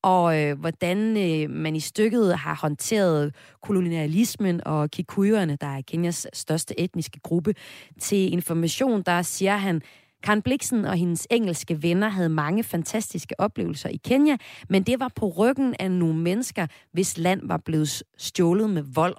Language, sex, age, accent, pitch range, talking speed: Danish, female, 30-49, native, 160-205 Hz, 160 wpm